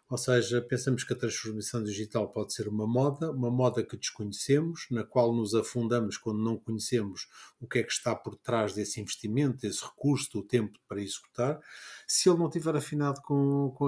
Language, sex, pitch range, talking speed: Portuguese, male, 115-140 Hz, 190 wpm